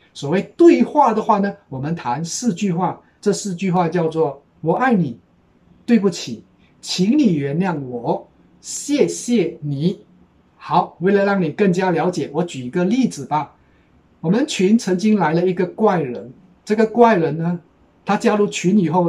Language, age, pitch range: Chinese, 50-69, 160-215 Hz